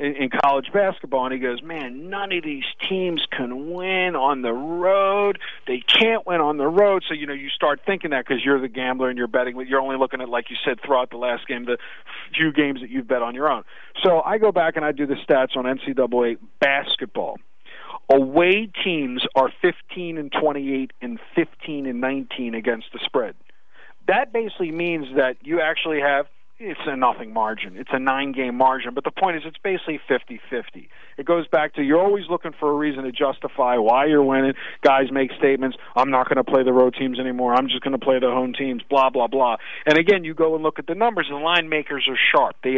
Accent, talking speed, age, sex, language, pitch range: American, 220 wpm, 40-59, male, English, 130-170 Hz